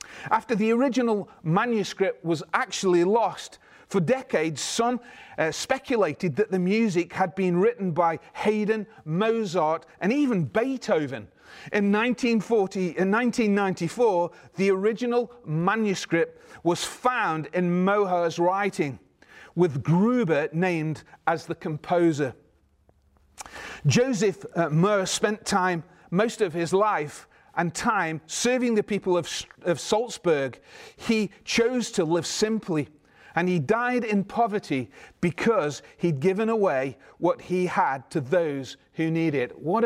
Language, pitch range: English, 165-215 Hz